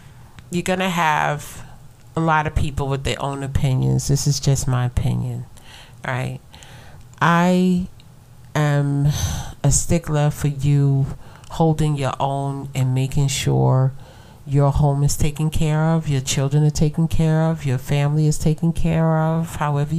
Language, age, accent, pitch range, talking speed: English, 40-59, American, 135-160 Hz, 145 wpm